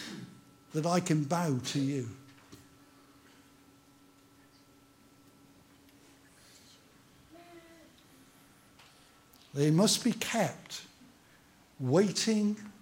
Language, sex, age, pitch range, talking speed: English, male, 60-79, 135-195 Hz, 50 wpm